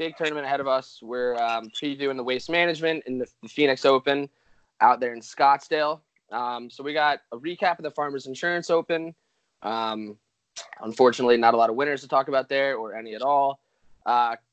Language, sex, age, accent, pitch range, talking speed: English, male, 20-39, American, 120-150 Hz, 190 wpm